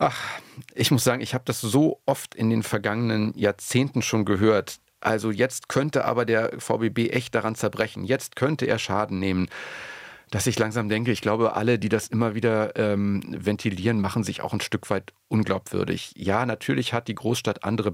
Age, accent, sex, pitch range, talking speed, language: 40-59, German, male, 100-120 Hz, 185 wpm, German